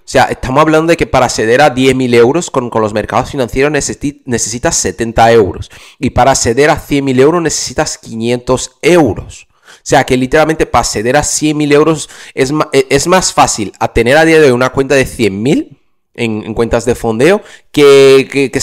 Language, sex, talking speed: Spanish, male, 195 wpm